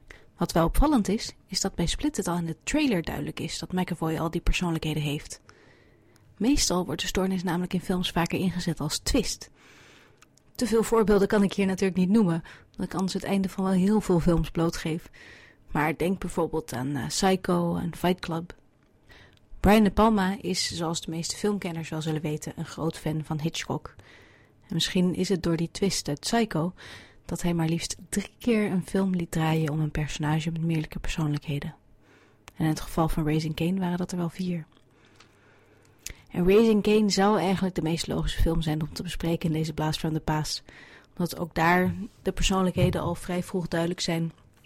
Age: 30-49